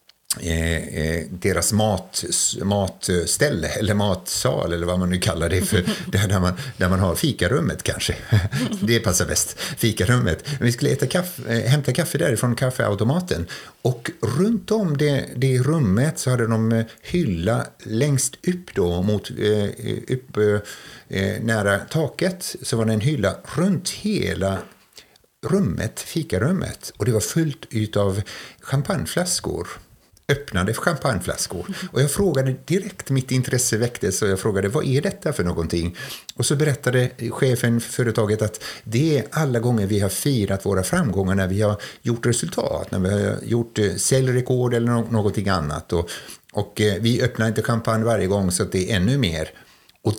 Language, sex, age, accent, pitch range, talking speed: Swedish, male, 50-69, native, 100-135 Hz, 155 wpm